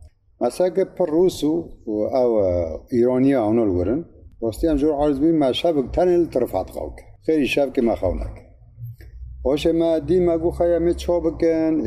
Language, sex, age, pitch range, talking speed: Turkish, male, 50-69, 110-160 Hz, 140 wpm